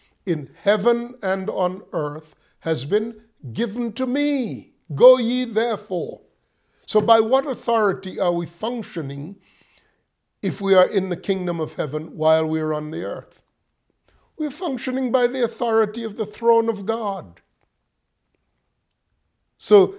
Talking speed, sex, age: 140 wpm, male, 50-69